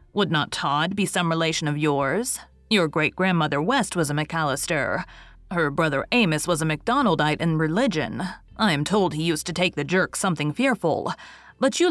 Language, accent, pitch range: English, American, 155-210 Hz